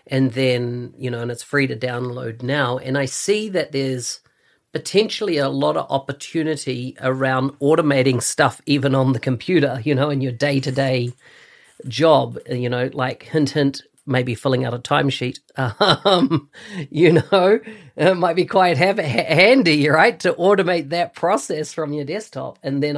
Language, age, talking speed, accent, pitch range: English, 40-59, 160 wpm, Australian, 130-155 Hz